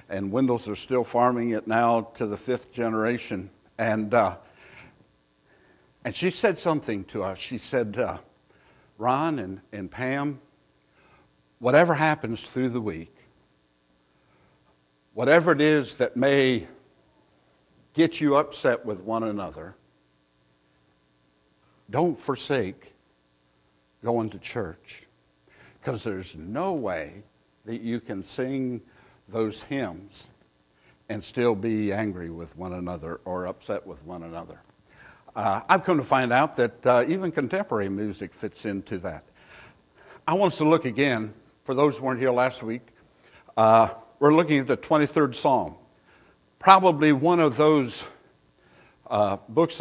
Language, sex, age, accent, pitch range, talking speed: English, male, 60-79, American, 80-140 Hz, 130 wpm